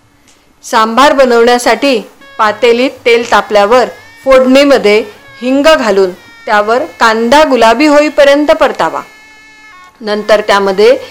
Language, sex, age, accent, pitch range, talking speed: Marathi, female, 40-59, native, 215-310 Hz, 80 wpm